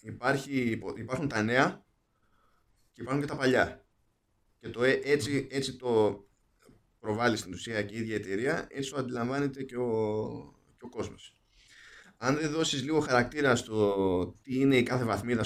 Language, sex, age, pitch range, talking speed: Greek, male, 20-39, 105-130 Hz, 155 wpm